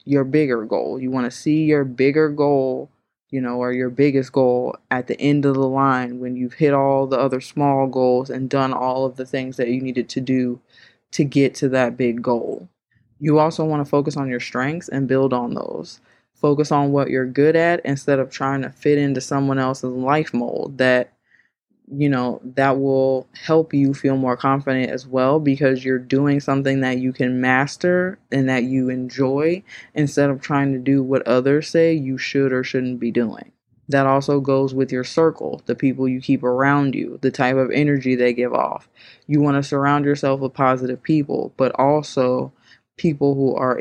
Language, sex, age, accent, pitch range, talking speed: English, female, 20-39, American, 125-140 Hz, 200 wpm